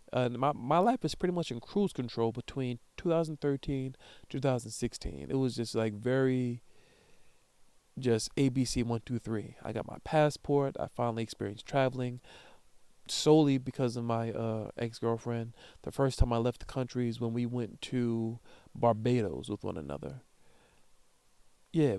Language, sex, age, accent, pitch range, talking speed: English, male, 40-59, American, 115-140 Hz, 140 wpm